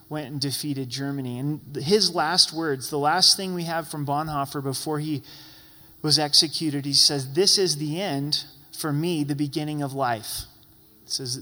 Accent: American